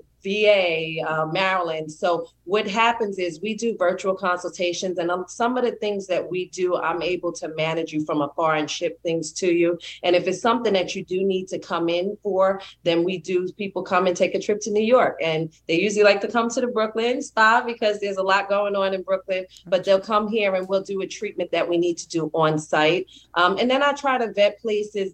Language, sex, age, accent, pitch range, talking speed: English, female, 30-49, American, 165-200 Hz, 235 wpm